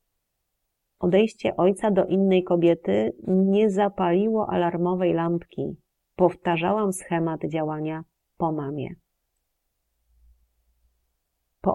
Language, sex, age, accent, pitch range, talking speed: Polish, female, 40-59, native, 160-200 Hz, 75 wpm